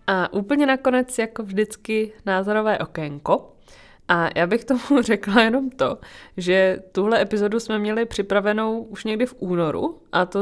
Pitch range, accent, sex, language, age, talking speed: 185-220 Hz, native, female, Czech, 20-39, 150 wpm